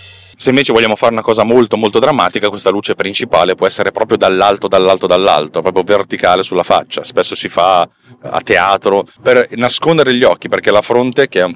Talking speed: 190 wpm